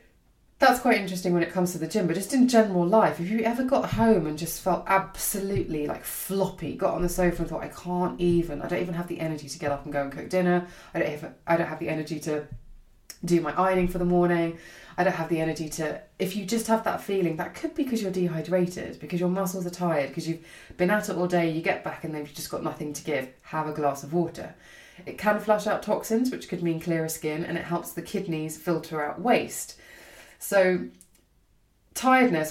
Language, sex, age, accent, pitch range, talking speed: English, female, 20-39, British, 155-185 Hz, 240 wpm